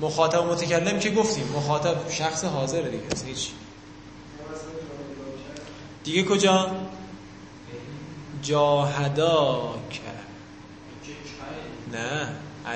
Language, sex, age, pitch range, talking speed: Persian, male, 20-39, 100-155 Hz, 55 wpm